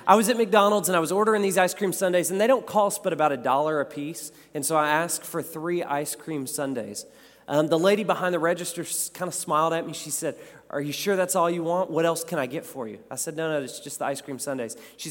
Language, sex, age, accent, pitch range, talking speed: English, male, 30-49, American, 150-200 Hz, 280 wpm